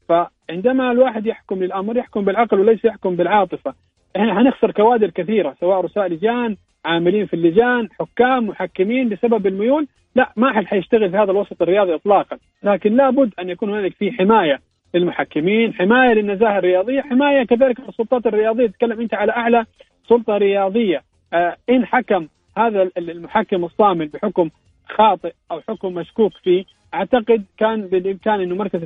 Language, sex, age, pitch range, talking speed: English, male, 40-59, 180-230 Hz, 145 wpm